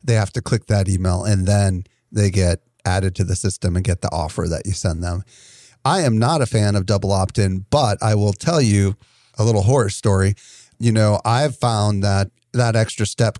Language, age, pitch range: English, 40-59, 100-120 Hz